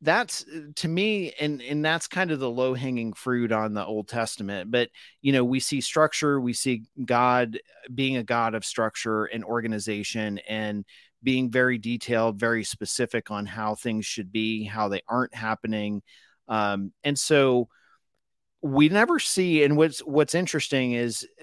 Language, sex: English, male